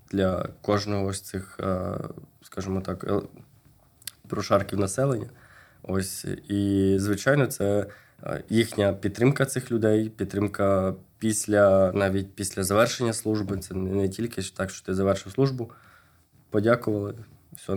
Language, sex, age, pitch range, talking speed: Ukrainian, male, 20-39, 95-115 Hz, 110 wpm